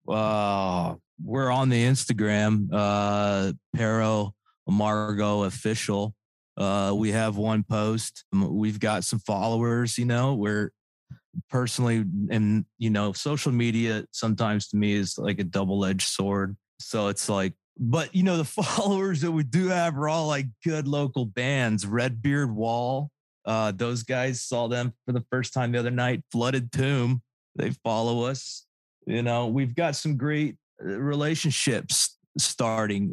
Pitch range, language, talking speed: 105-125 Hz, English, 145 wpm